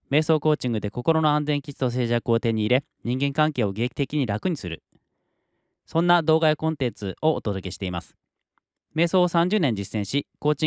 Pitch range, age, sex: 110-155 Hz, 20-39, male